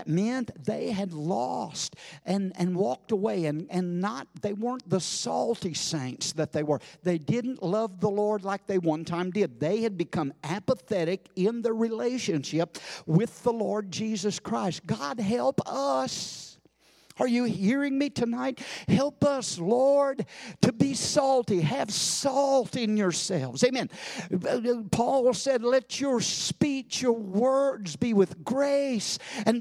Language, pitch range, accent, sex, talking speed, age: English, 185-265 Hz, American, male, 145 wpm, 50-69